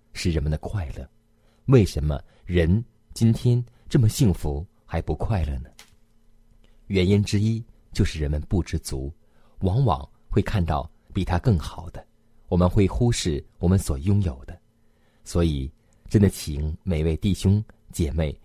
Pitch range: 85-110 Hz